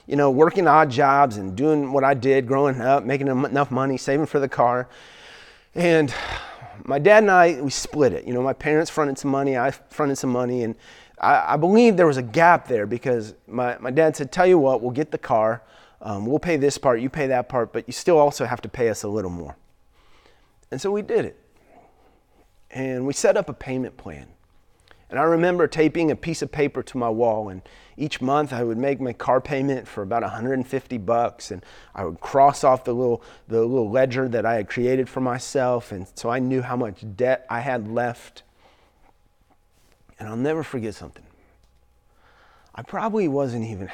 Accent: American